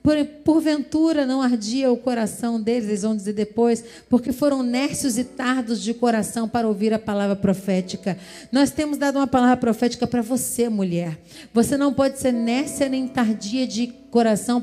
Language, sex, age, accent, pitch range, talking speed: Portuguese, female, 40-59, Brazilian, 235-320 Hz, 165 wpm